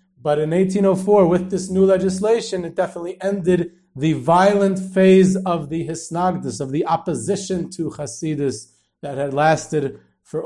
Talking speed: 145 wpm